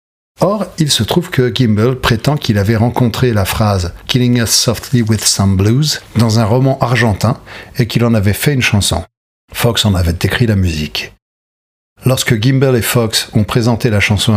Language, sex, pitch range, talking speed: French, male, 105-125 Hz, 190 wpm